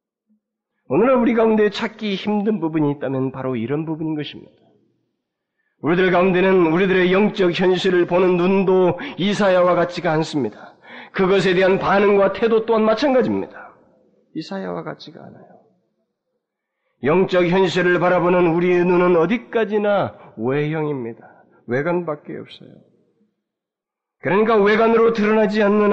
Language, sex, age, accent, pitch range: Korean, male, 30-49, native, 135-190 Hz